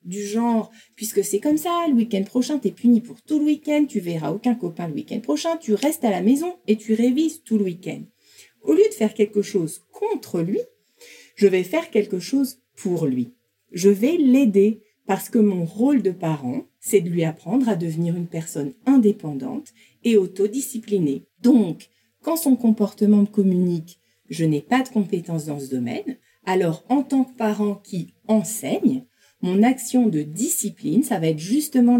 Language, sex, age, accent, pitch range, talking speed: French, female, 50-69, French, 185-255 Hz, 185 wpm